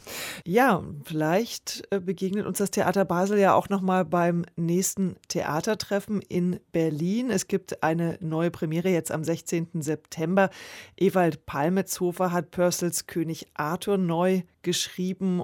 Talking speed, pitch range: 125 wpm, 165-190 Hz